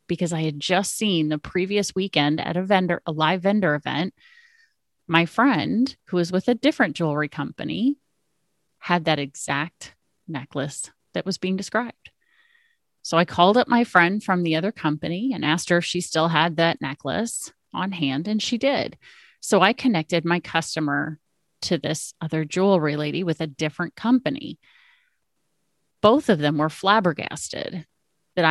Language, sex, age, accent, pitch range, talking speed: English, female, 30-49, American, 160-225 Hz, 160 wpm